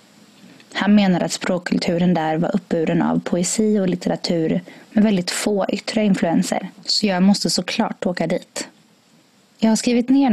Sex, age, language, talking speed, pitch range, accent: female, 20-39, Swedish, 150 wpm, 175-230 Hz, native